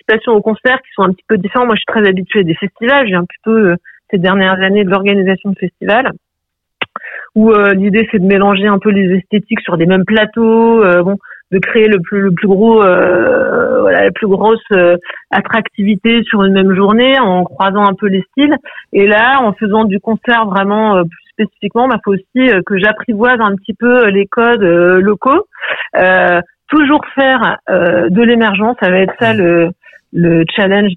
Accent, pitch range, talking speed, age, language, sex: French, 190-225 Hz, 200 wpm, 40-59, French, female